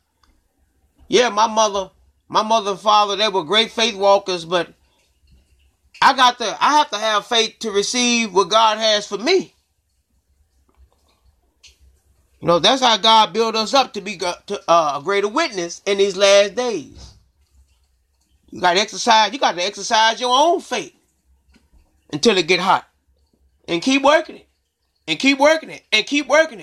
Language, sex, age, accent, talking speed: English, male, 30-49, American, 170 wpm